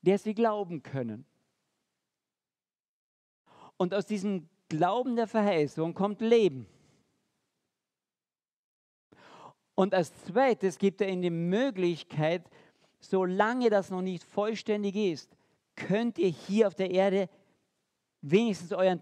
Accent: German